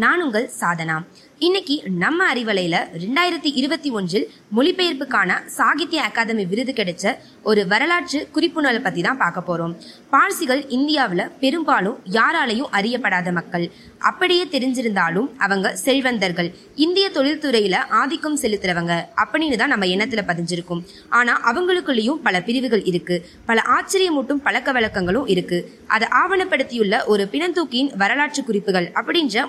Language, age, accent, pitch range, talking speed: Tamil, 20-39, native, 195-290 Hz, 100 wpm